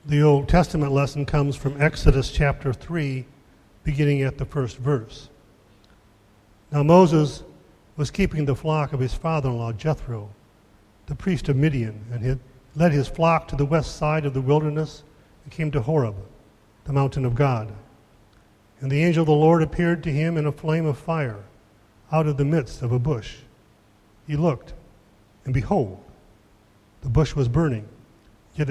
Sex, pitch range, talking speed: male, 110-150 Hz, 165 wpm